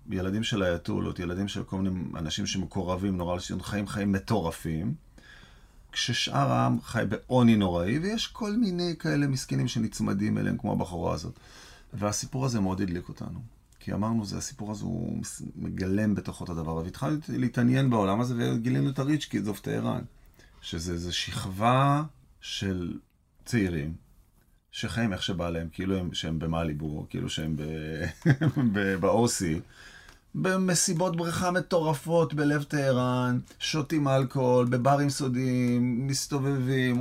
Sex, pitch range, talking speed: male, 95-135 Hz, 125 wpm